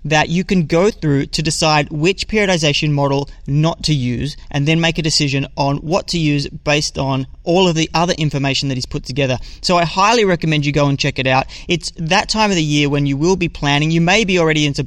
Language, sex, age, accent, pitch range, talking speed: English, male, 30-49, Australian, 145-180 Hz, 240 wpm